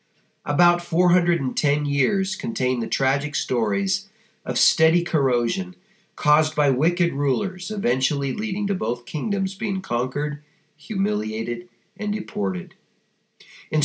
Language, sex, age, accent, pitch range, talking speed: English, male, 50-69, American, 135-195 Hz, 110 wpm